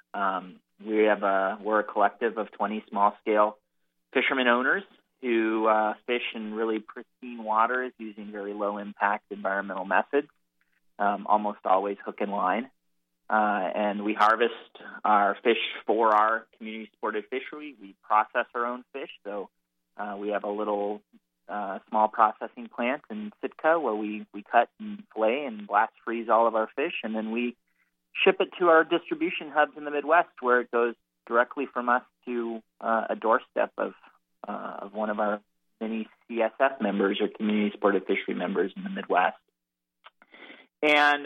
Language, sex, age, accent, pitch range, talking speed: English, male, 30-49, American, 100-120 Hz, 155 wpm